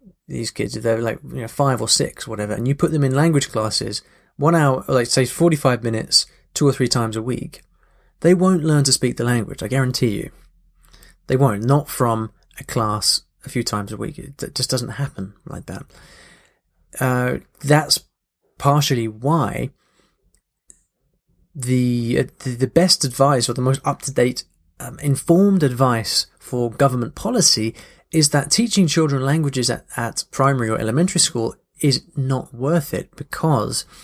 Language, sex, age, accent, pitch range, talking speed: English, male, 20-39, British, 115-145 Hz, 165 wpm